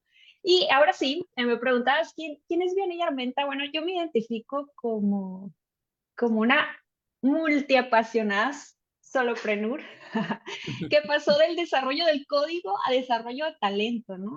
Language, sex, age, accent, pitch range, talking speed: Spanish, female, 20-39, Mexican, 220-280 Hz, 125 wpm